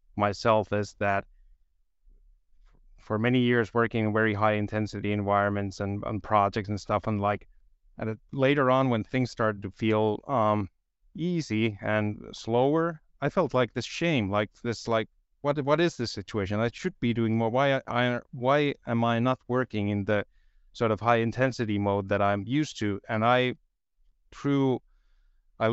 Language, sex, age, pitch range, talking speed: English, male, 30-49, 100-125 Hz, 165 wpm